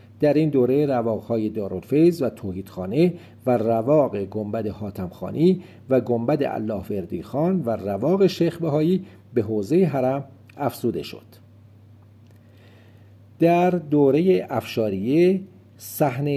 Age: 50-69